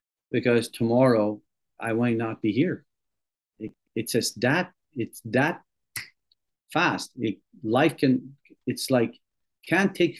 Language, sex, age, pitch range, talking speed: English, male, 40-59, 110-145 Hz, 110 wpm